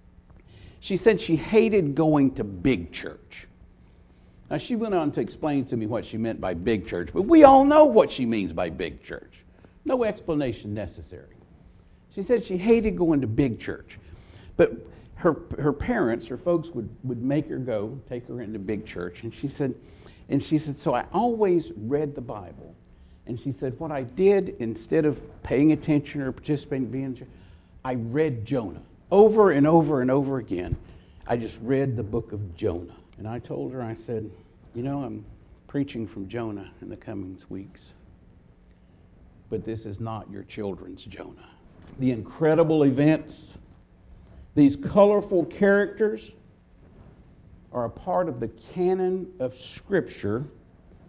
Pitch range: 105-155 Hz